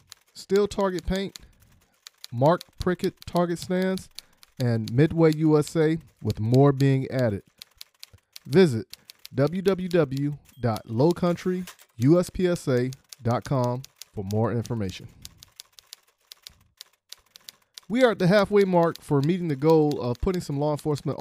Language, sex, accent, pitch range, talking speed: English, male, American, 120-170 Hz, 95 wpm